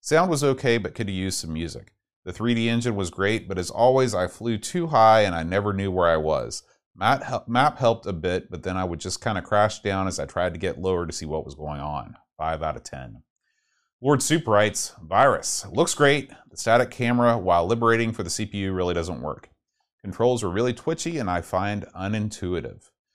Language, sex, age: English, male, 30-49